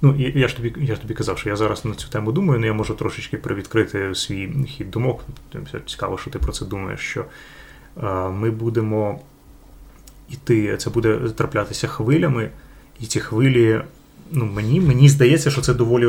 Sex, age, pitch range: male, 20-39, 105-130 Hz